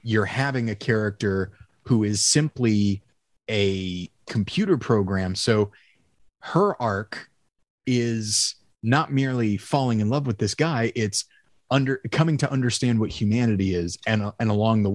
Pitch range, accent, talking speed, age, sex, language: 100-125 Hz, American, 135 wpm, 30-49, male, English